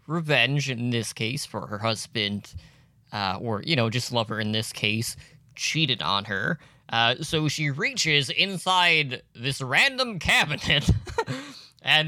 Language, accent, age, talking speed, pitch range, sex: English, American, 20-39, 140 wpm, 130-175 Hz, male